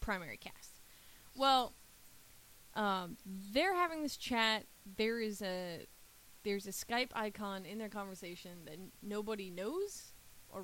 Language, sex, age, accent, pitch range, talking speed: English, female, 20-39, American, 180-220 Hz, 125 wpm